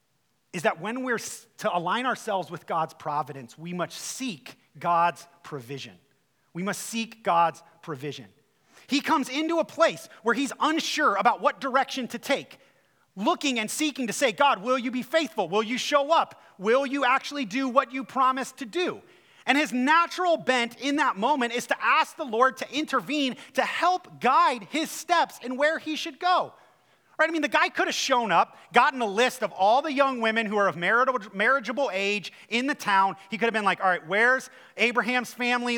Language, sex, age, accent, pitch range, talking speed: English, male, 30-49, American, 205-270 Hz, 190 wpm